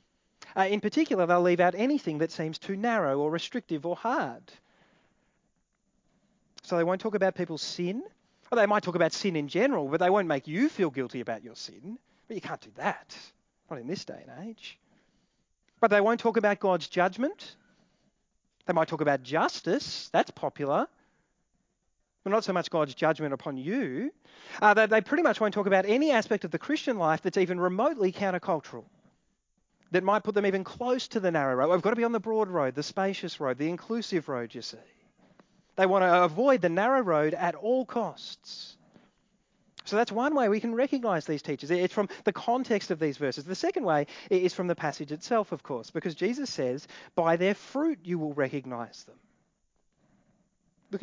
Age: 30-49